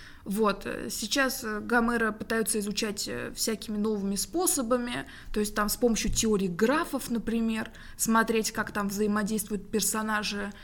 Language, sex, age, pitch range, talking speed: Russian, female, 20-39, 190-230 Hz, 120 wpm